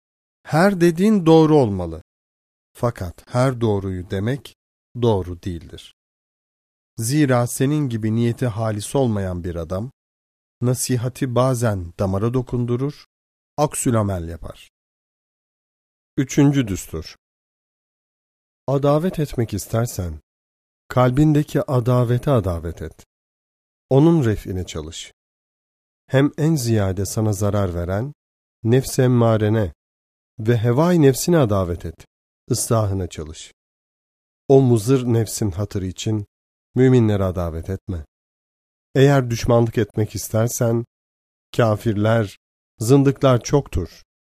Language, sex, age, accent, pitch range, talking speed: Turkish, male, 40-59, native, 85-125 Hz, 90 wpm